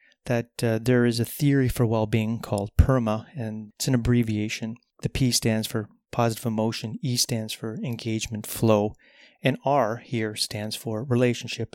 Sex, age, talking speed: male, 30-49, 160 wpm